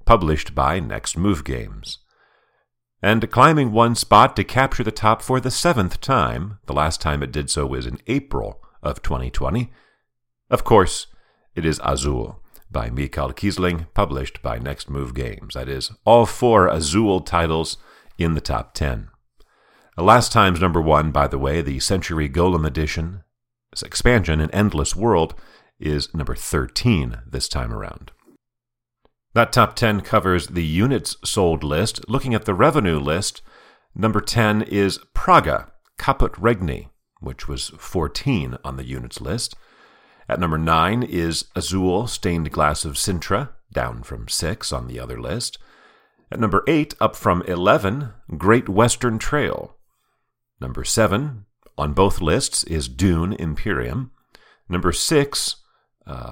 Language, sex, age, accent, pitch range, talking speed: English, male, 50-69, American, 75-110 Hz, 145 wpm